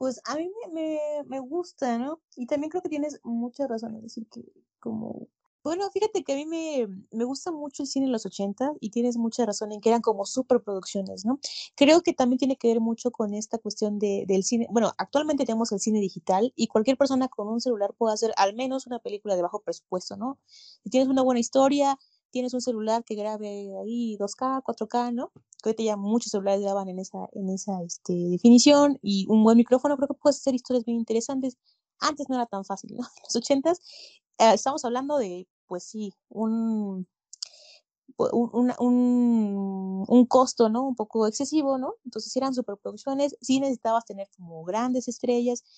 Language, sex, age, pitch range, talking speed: Spanish, female, 20-39, 215-270 Hz, 195 wpm